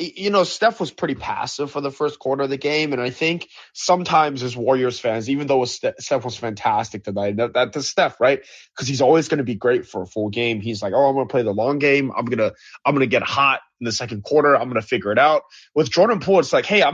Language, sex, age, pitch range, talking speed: English, male, 20-39, 115-155 Hz, 270 wpm